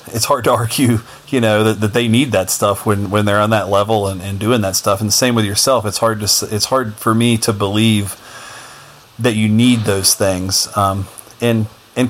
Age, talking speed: 30-49, 225 wpm